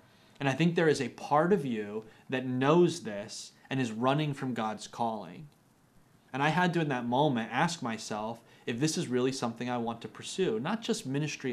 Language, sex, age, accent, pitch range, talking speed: English, male, 30-49, American, 115-150 Hz, 205 wpm